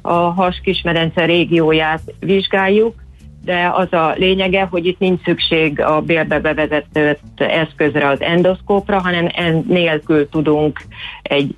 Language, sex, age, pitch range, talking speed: Hungarian, female, 40-59, 145-175 Hz, 120 wpm